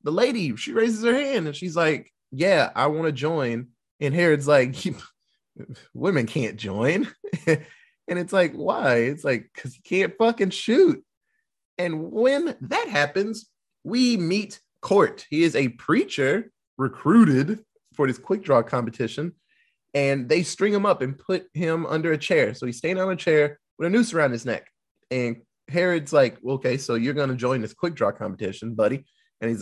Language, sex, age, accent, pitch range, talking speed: English, male, 20-39, American, 125-200 Hz, 175 wpm